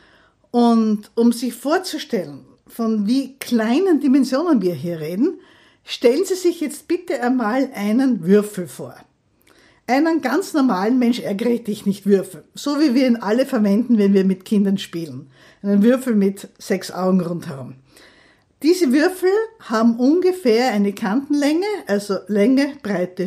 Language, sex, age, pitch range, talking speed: German, female, 60-79, 205-290 Hz, 140 wpm